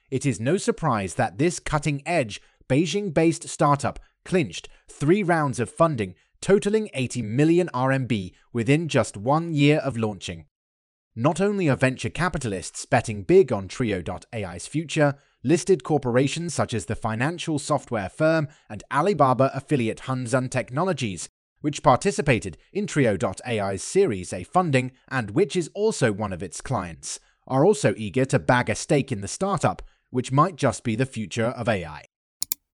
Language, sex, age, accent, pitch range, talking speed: English, male, 30-49, British, 115-155 Hz, 150 wpm